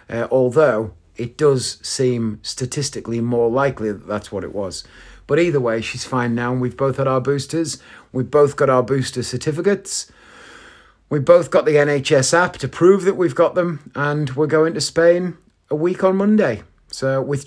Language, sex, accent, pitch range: English, male, British, 120-155 Hz